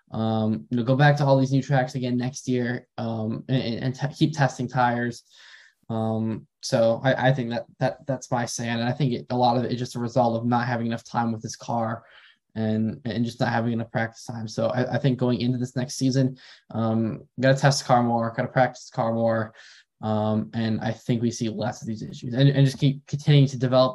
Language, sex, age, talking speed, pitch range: English, male, 10-29, 225 wpm, 115-130 Hz